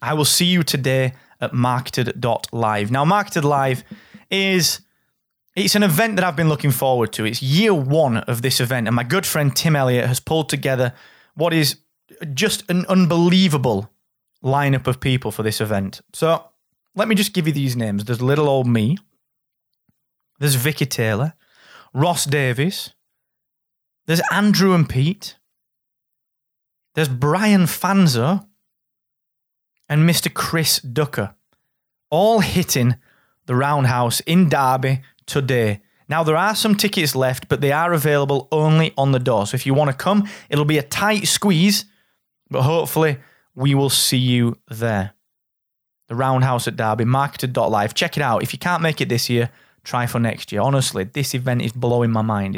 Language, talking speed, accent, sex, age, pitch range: English, 155 wpm, British, male, 20-39, 125-170 Hz